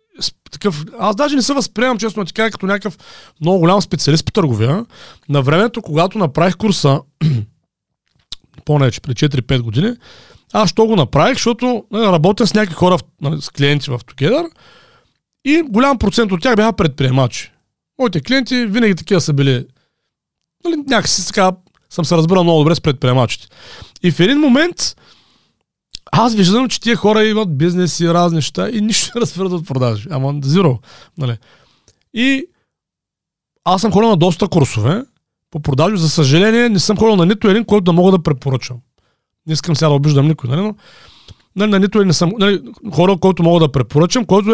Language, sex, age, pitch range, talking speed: Bulgarian, male, 30-49, 145-215 Hz, 170 wpm